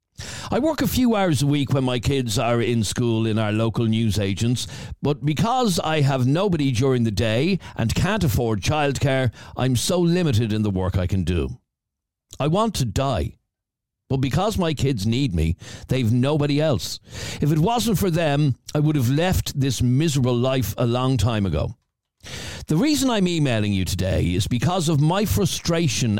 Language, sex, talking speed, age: English, male, 180 wpm, 60-79